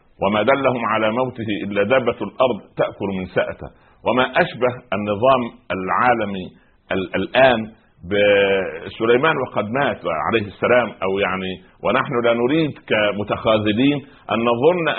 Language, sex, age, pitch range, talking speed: Arabic, male, 60-79, 105-130 Hz, 110 wpm